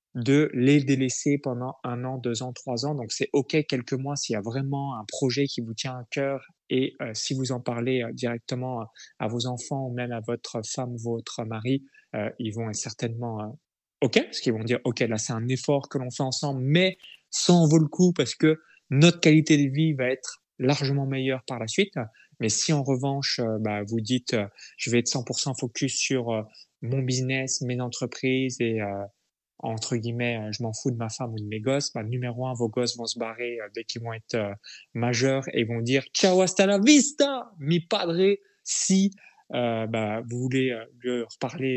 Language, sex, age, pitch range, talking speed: French, male, 20-39, 120-140 Hz, 215 wpm